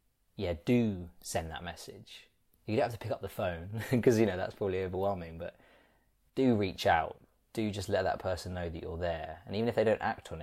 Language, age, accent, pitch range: English, 20-39, British, 90-105 Hz